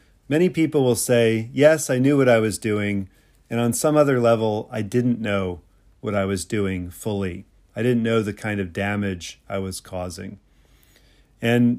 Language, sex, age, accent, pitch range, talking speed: English, male, 40-59, American, 100-130 Hz, 180 wpm